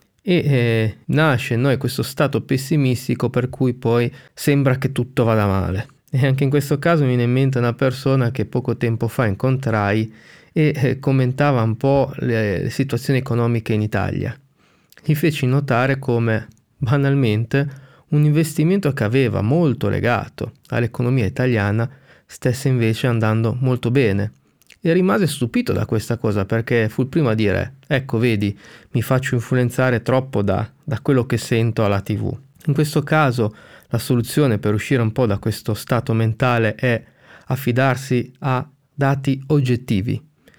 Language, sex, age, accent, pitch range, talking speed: Italian, male, 30-49, native, 115-135 Hz, 155 wpm